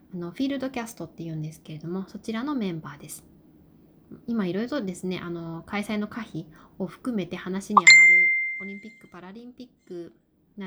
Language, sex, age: Japanese, female, 20-39